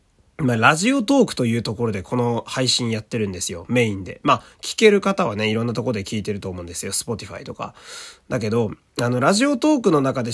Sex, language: male, Japanese